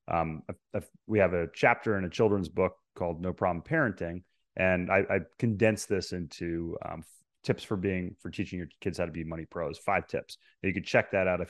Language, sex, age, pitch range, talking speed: English, male, 30-49, 85-100 Hz, 230 wpm